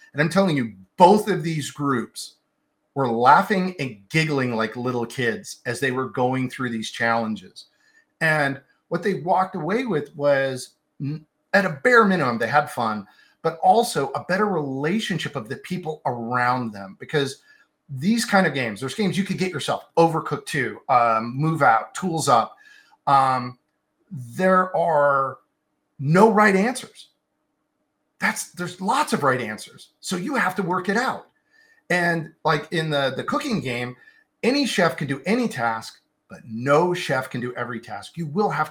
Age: 40-59